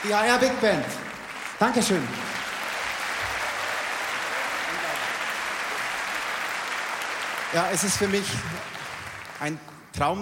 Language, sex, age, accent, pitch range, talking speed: German, male, 30-49, German, 125-160 Hz, 75 wpm